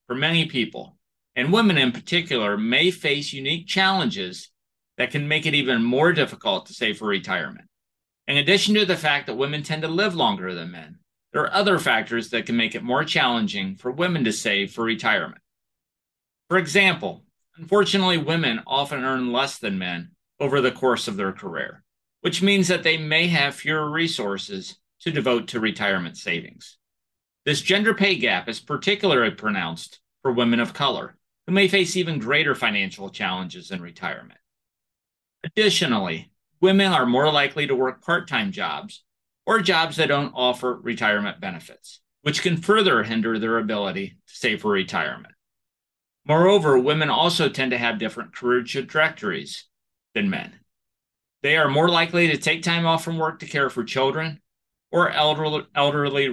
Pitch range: 125-180 Hz